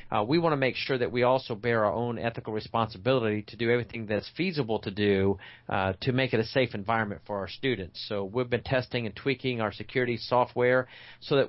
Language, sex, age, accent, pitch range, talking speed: English, male, 40-59, American, 105-130 Hz, 220 wpm